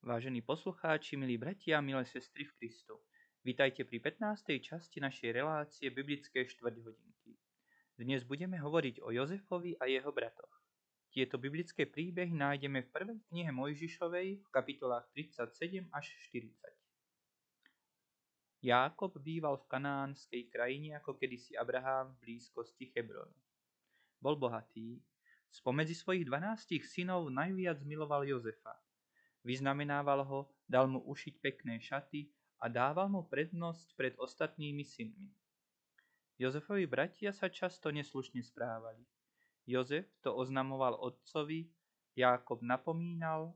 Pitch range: 130-170 Hz